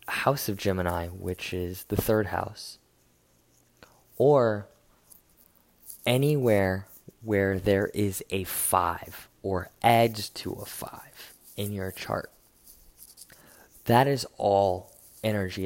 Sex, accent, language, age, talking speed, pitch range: male, American, English, 20-39, 105 wpm, 90-115 Hz